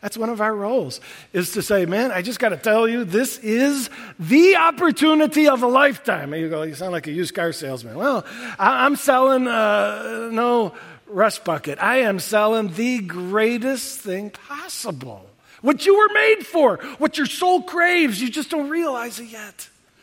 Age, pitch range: 50-69, 175-250 Hz